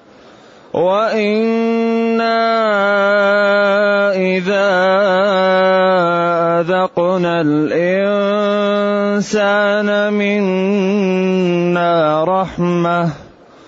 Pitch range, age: 175-230 Hz, 30-49